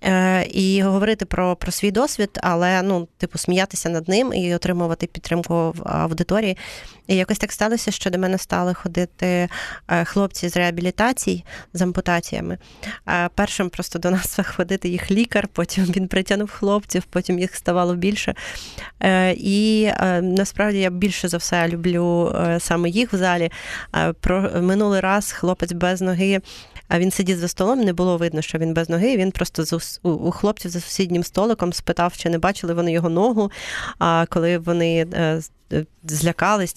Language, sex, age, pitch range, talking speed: Ukrainian, female, 30-49, 175-195 Hz, 150 wpm